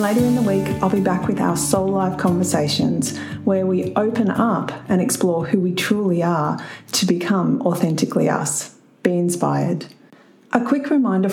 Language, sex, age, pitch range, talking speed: English, female, 40-59, 180-225 Hz, 165 wpm